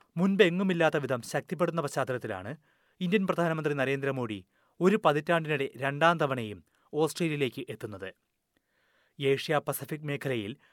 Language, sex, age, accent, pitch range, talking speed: Malayalam, male, 30-49, native, 135-175 Hz, 95 wpm